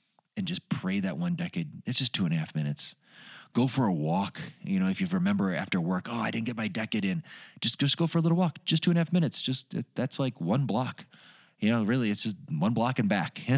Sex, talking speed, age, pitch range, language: male, 255 wpm, 30-49, 120-185 Hz, English